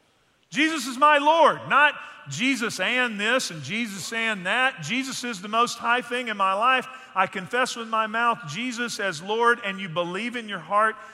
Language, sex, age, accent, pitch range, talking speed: English, male, 40-59, American, 175-245 Hz, 190 wpm